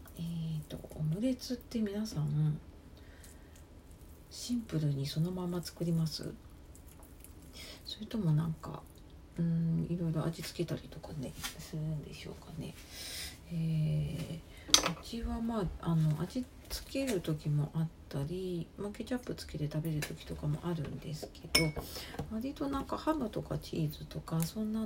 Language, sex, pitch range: Japanese, female, 135-180 Hz